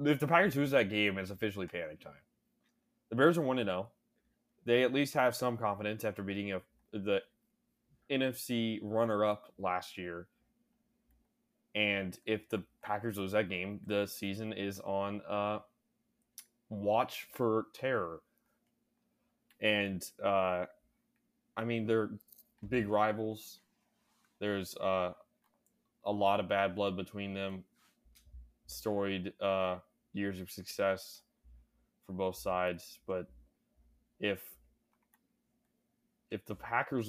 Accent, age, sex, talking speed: American, 20-39, male, 115 wpm